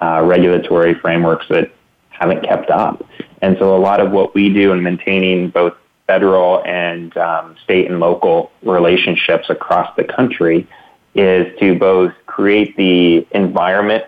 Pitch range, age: 85-100 Hz, 30-49